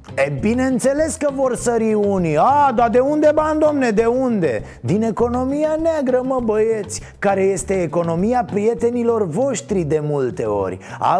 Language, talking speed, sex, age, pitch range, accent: Romanian, 150 wpm, male, 30-49, 160-230 Hz, native